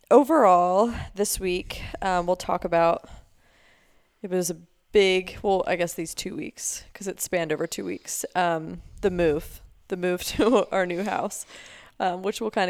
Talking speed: 170 wpm